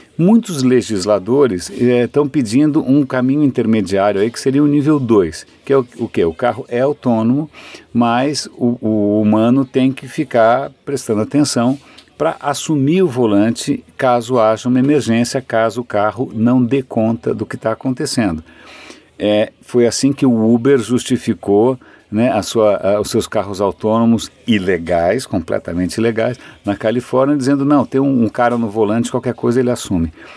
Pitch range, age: 110-140 Hz, 50-69